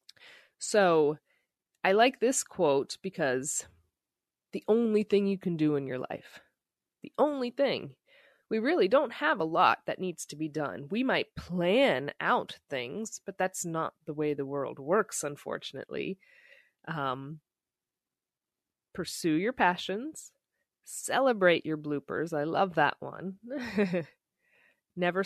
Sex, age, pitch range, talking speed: female, 20-39, 150-200 Hz, 130 wpm